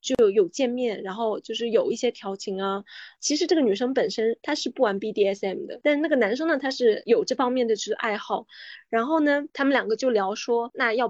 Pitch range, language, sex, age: 220-285 Hz, Chinese, female, 20-39